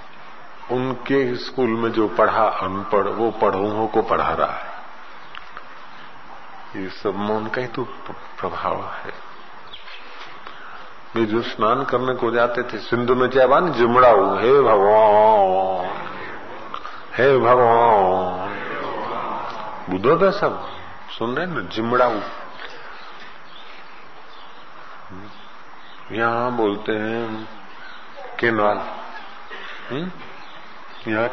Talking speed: 90 wpm